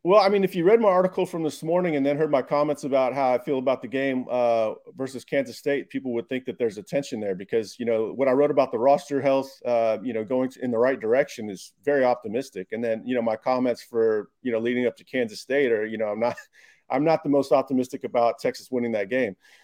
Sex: male